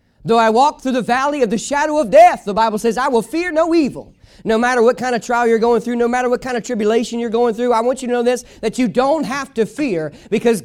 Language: English